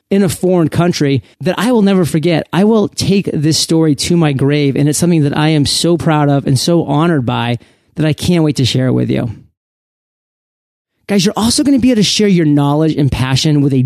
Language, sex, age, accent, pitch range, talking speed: English, male, 30-49, American, 140-185 Hz, 230 wpm